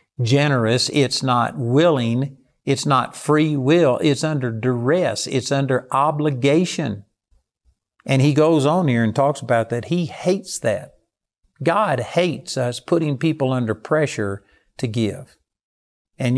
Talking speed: 130 wpm